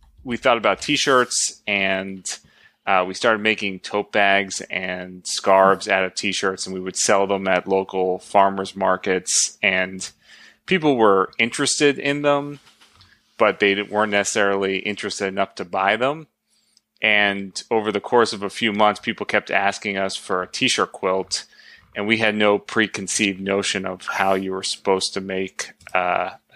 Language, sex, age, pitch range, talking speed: English, male, 30-49, 95-105 Hz, 160 wpm